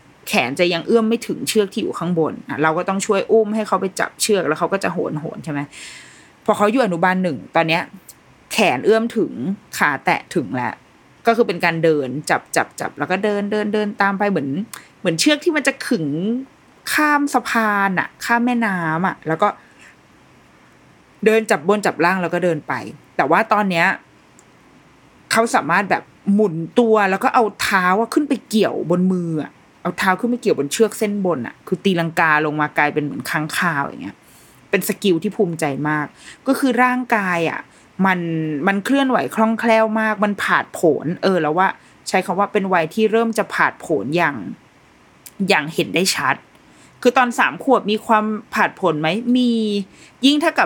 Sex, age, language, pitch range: female, 20-39, Thai, 170-225 Hz